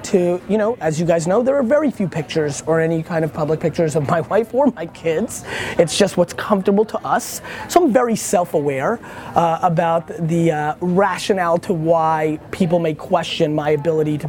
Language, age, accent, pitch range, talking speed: English, 30-49, American, 150-185 Hz, 195 wpm